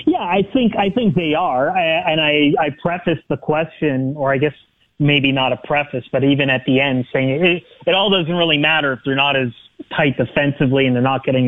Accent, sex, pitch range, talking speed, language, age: American, male, 130-160 Hz, 225 wpm, English, 30-49